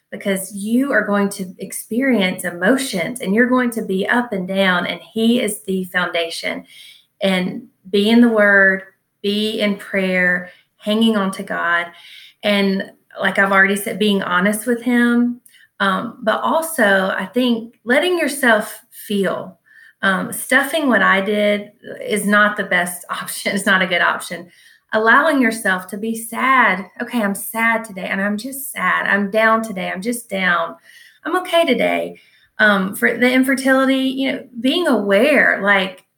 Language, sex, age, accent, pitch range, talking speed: English, female, 30-49, American, 195-245 Hz, 160 wpm